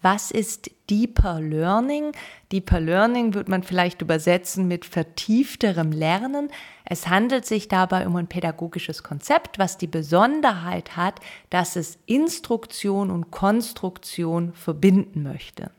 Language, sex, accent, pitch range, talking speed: German, female, German, 165-210 Hz, 120 wpm